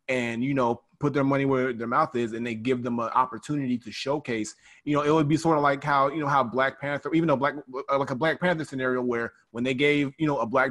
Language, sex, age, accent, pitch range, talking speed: English, male, 20-39, American, 115-135 Hz, 270 wpm